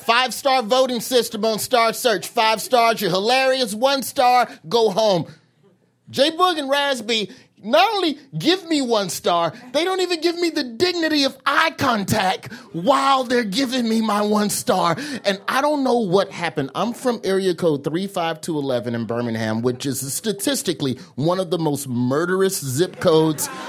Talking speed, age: 160 wpm, 30-49